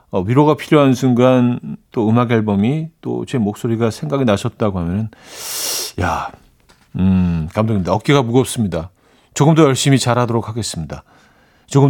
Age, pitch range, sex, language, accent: 40-59, 95-140 Hz, male, Korean, native